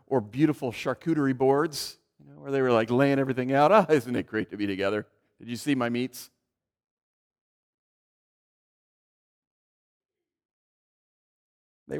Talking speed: 135 wpm